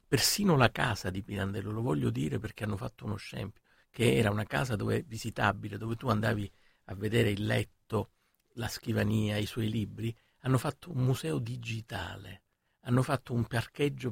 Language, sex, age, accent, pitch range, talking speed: Italian, male, 50-69, native, 105-125 Hz, 170 wpm